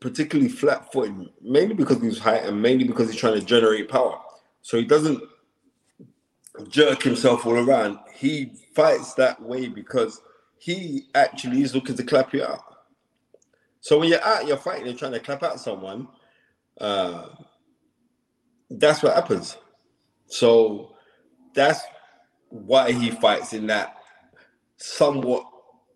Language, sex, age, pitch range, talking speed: English, male, 20-39, 110-150 Hz, 140 wpm